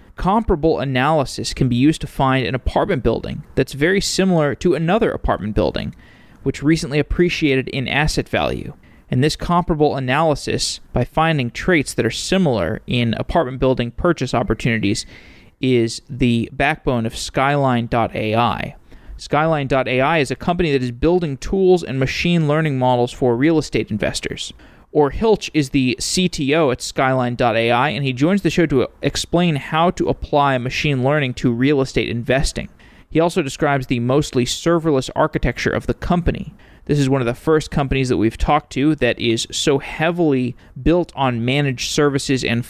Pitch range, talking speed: 120-155 Hz, 155 wpm